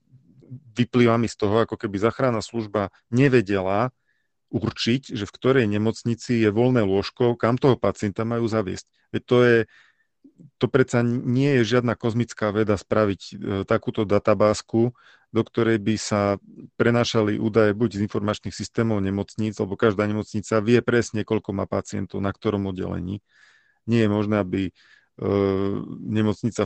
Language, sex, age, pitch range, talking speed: Slovak, male, 40-59, 100-120 Hz, 135 wpm